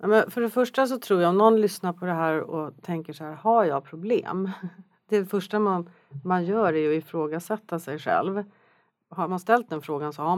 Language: Swedish